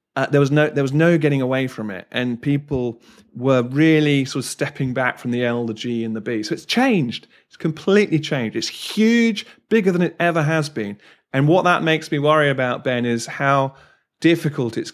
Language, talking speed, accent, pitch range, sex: English, 215 wpm, British, 115-145 Hz, male